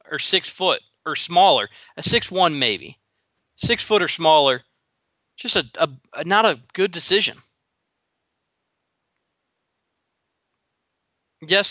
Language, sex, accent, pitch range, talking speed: English, male, American, 135-160 Hz, 115 wpm